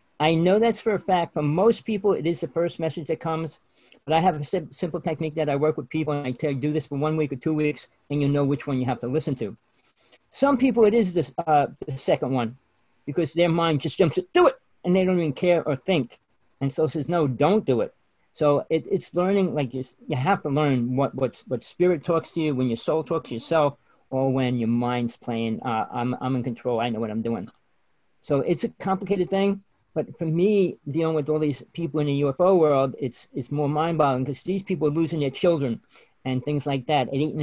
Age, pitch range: 40-59, 140-175 Hz